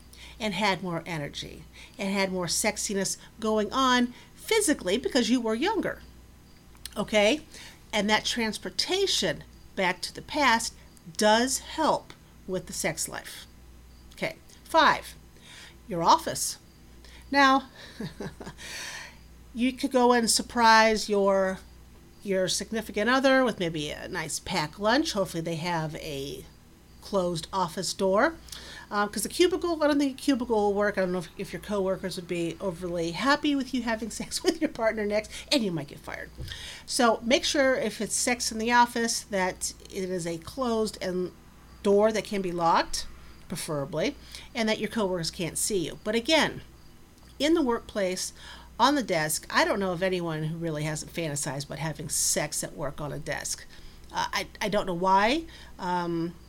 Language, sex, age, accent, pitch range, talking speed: English, female, 50-69, American, 170-235 Hz, 160 wpm